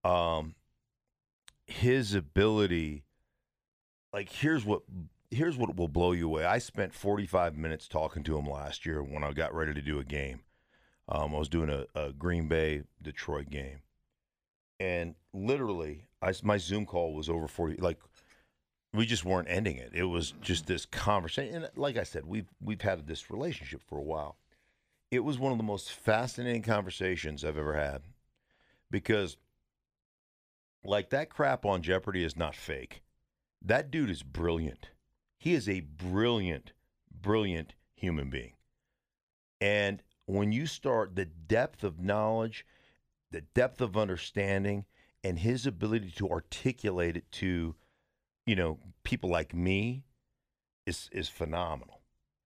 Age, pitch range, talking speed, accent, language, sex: 50-69, 80-105 Hz, 145 wpm, American, English, male